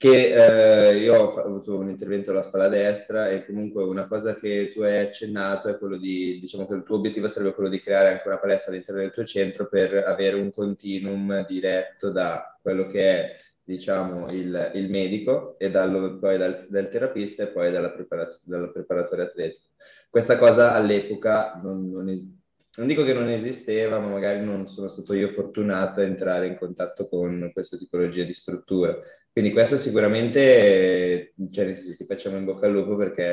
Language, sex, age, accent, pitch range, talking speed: Italian, male, 20-39, native, 95-105 Hz, 180 wpm